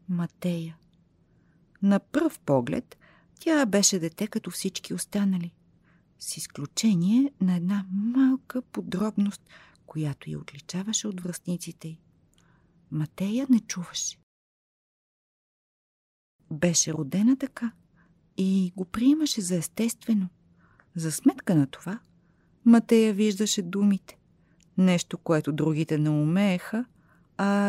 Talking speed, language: 100 wpm, Bulgarian